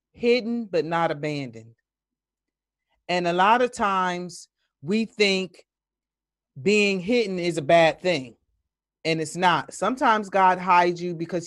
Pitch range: 160-215 Hz